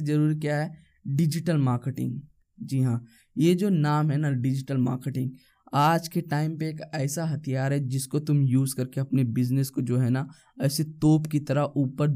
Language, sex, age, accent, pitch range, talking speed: Hindi, male, 20-39, native, 135-160 Hz, 185 wpm